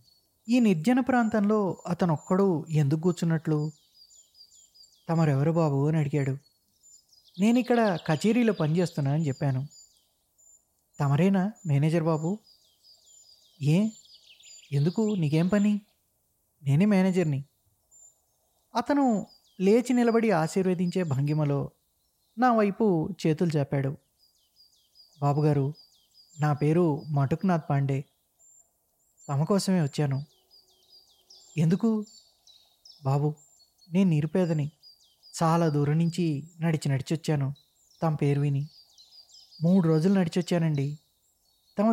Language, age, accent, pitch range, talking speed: Telugu, 20-39, native, 145-205 Hz, 80 wpm